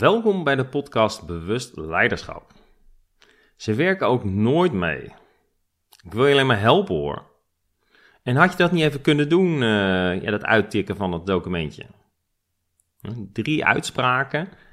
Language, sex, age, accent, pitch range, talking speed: Dutch, male, 40-59, Dutch, 105-135 Hz, 145 wpm